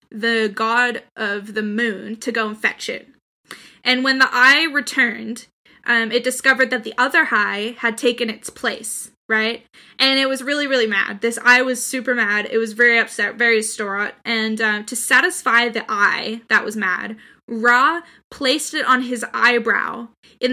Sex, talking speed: female, 175 wpm